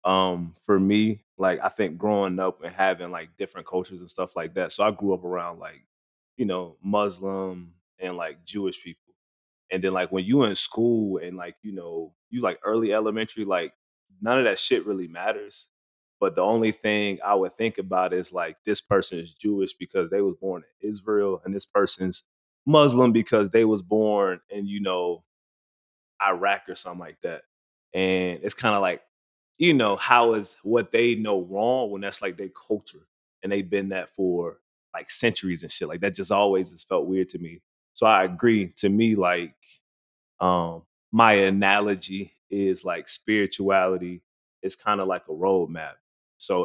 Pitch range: 90-105 Hz